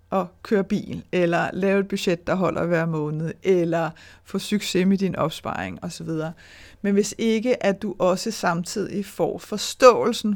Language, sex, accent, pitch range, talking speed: Danish, female, native, 165-210 Hz, 155 wpm